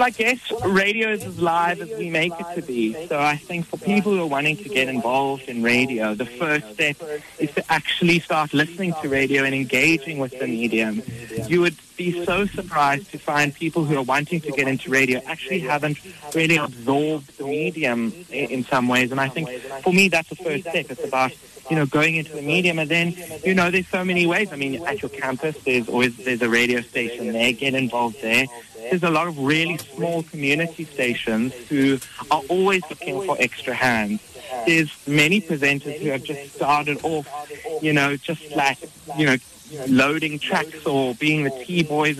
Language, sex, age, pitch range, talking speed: English, male, 30-49, 130-165 Hz, 200 wpm